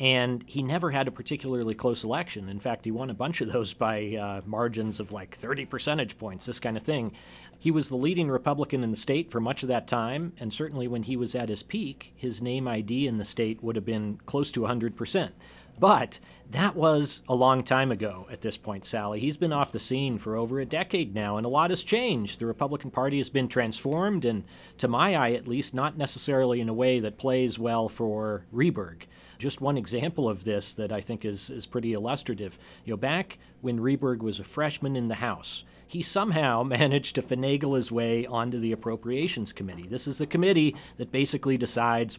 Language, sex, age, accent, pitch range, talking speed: English, male, 40-59, American, 110-140 Hz, 215 wpm